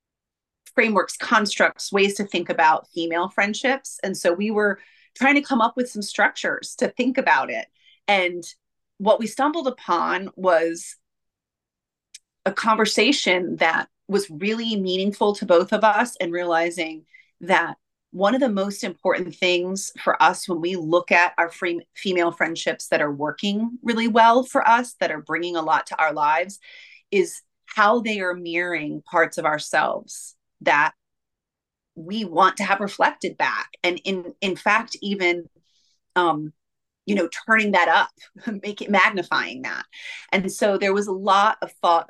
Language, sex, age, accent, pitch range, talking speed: English, female, 30-49, American, 170-225 Hz, 155 wpm